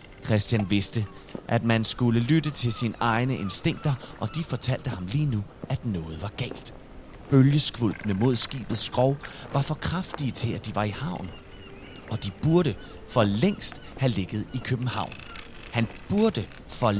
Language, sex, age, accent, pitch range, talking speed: Danish, male, 30-49, native, 105-135 Hz, 160 wpm